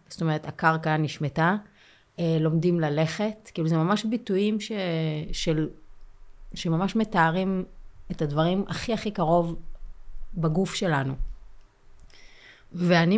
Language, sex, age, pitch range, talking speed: Hebrew, female, 30-49, 155-190 Hz, 100 wpm